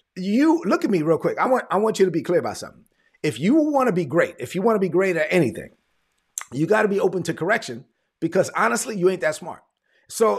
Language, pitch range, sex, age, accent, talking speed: English, 170-245 Hz, male, 30-49, American, 255 wpm